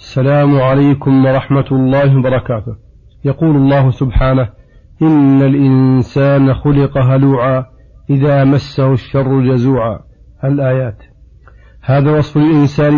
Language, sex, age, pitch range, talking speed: Arabic, male, 40-59, 130-150 Hz, 95 wpm